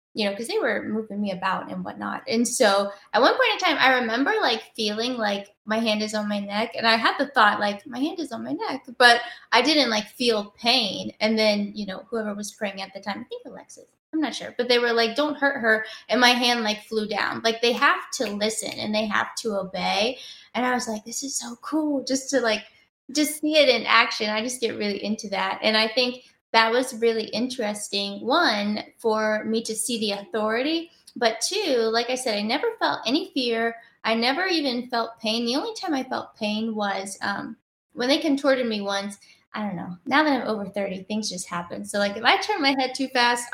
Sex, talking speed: female, 235 wpm